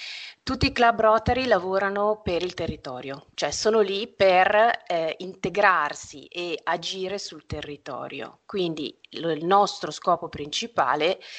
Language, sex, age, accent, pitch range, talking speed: Italian, female, 30-49, native, 155-205 Hz, 120 wpm